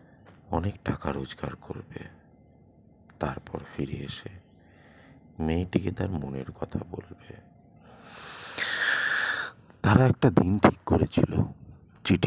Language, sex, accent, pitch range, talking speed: Bengali, male, native, 75-90 Hz, 75 wpm